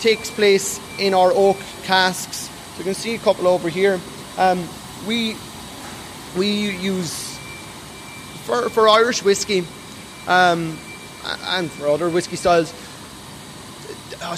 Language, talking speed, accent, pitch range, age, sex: German, 120 wpm, Irish, 160-190 Hz, 20-39, male